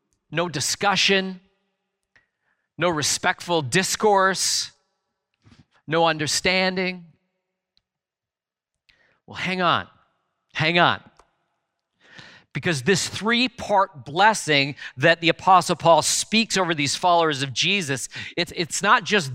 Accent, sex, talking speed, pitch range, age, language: American, male, 95 wpm, 150-185 Hz, 40-59, English